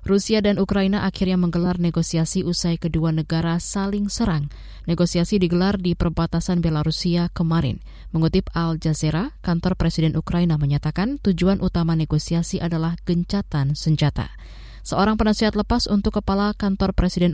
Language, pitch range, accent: Indonesian, 160-195 Hz, native